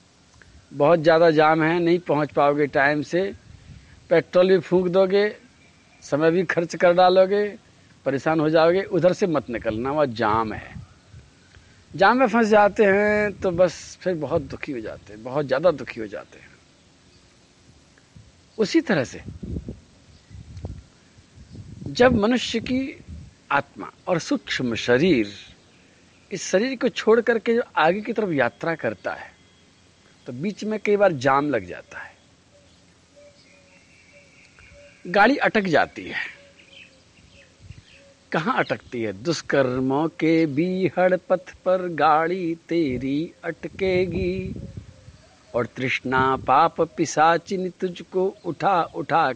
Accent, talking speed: native, 120 wpm